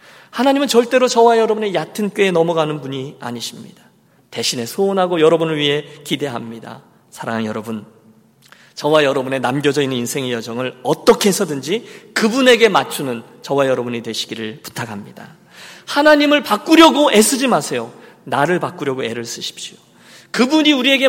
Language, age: Korean, 40-59